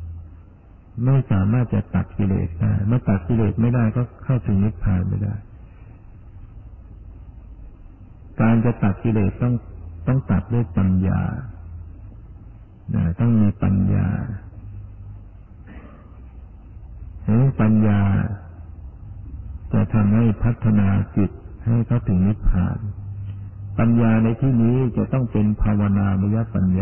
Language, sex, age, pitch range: Thai, male, 60-79, 95-110 Hz